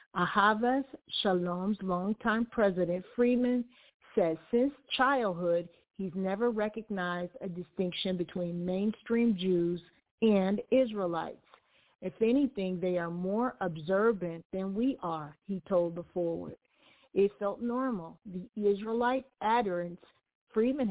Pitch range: 180-225 Hz